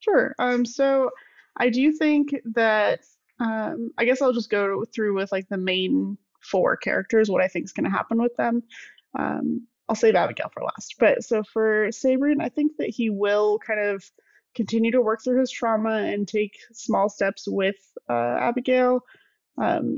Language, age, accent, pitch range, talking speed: English, 20-39, American, 200-250 Hz, 180 wpm